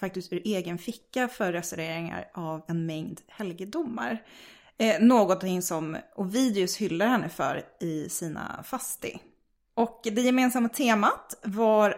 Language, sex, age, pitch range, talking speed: Swedish, female, 20-39, 175-230 Hz, 125 wpm